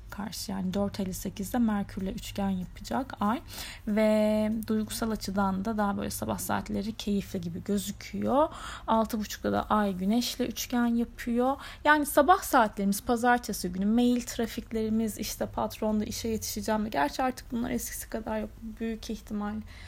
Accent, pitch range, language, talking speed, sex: native, 200-240 Hz, Turkish, 135 wpm, female